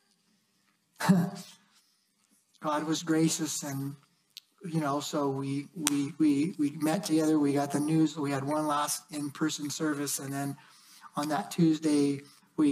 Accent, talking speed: American, 135 wpm